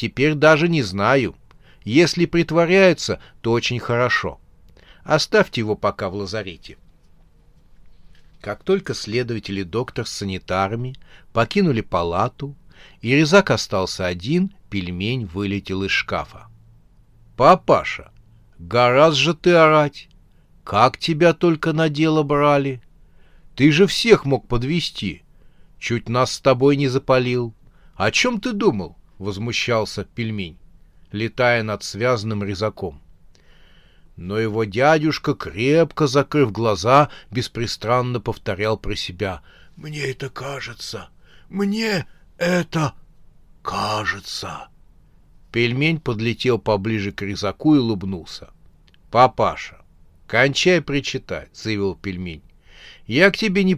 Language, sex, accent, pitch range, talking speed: Russian, male, native, 100-145 Hz, 110 wpm